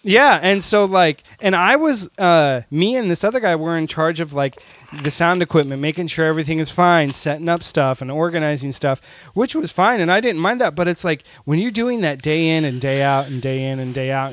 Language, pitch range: English, 135-170 Hz